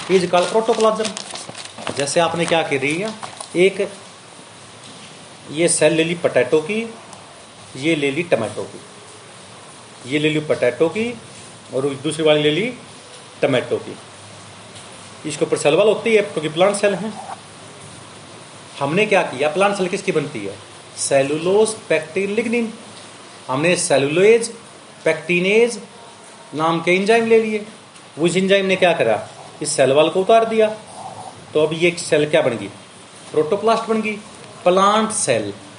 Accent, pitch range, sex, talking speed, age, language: native, 150-215 Hz, male, 135 wpm, 40-59, Hindi